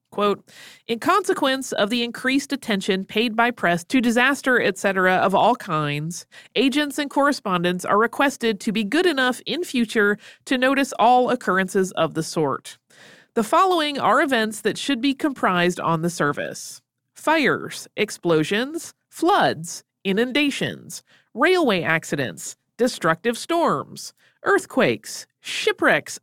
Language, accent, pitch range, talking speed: English, American, 185-275 Hz, 125 wpm